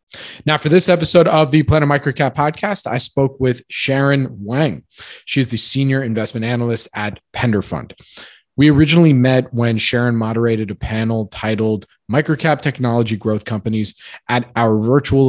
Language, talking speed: English, 150 wpm